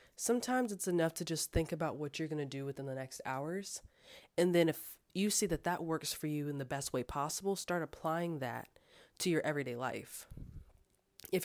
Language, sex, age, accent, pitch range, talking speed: English, female, 20-39, American, 155-220 Hz, 205 wpm